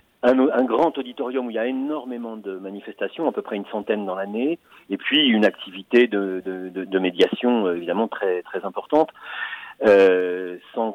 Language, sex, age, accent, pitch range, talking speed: French, male, 40-59, French, 95-130 Hz, 170 wpm